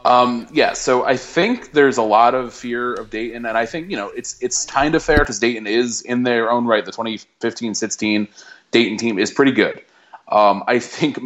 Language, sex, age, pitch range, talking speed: English, male, 20-39, 100-120 Hz, 215 wpm